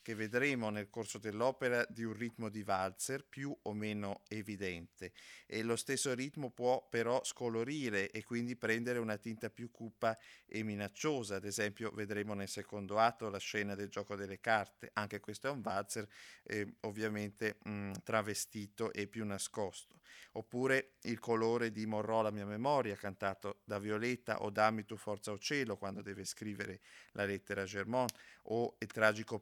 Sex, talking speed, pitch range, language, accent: male, 165 wpm, 100-115 Hz, Italian, native